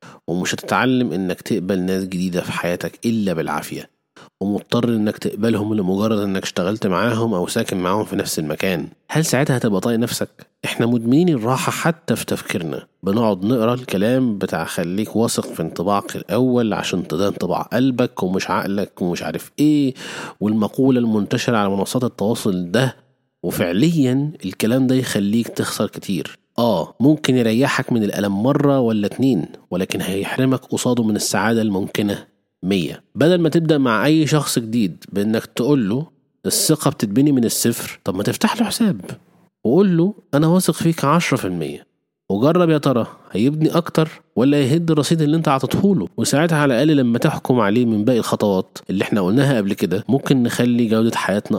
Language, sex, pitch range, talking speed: Arabic, male, 105-145 Hz, 150 wpm